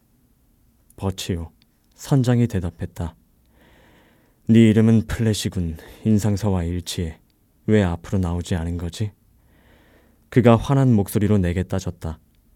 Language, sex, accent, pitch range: Korean, male, native, 90-115 Hz